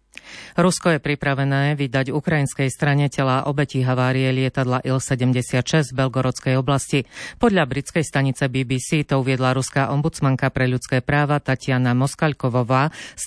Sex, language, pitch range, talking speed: female, Slovak, 125-145 Hz, 125 wpm